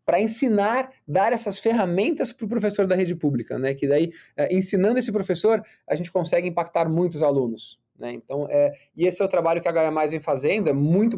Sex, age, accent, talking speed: male, 20-39, Brazilian, 210 wpm